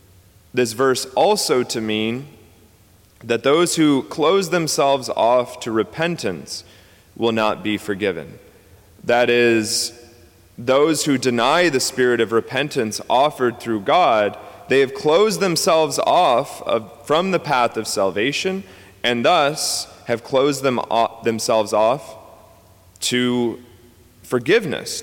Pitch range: 105-135 Hz